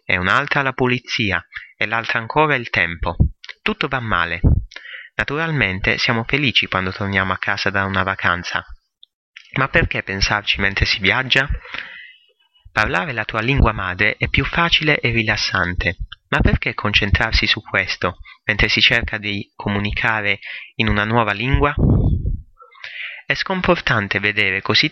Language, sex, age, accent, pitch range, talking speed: Italian, male, 30-49, native, 100-130 Hz, 135 wpm